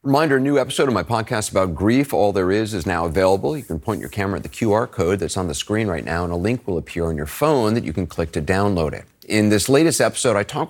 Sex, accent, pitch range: male, American, 85-110 Hz